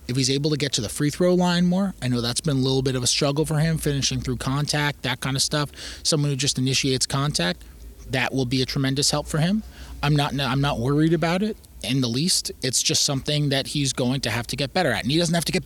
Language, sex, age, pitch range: Japanese, male, 20-39, 115-145 Hz